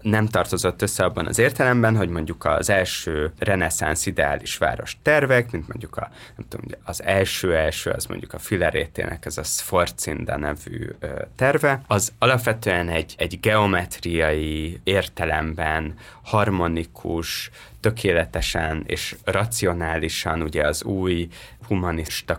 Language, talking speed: Hungarian, 120 wpm